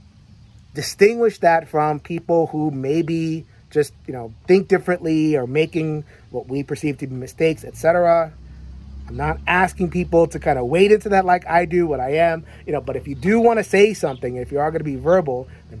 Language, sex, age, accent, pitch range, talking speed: English, male, 30-49, American, 120-165 Hz, 205 wpm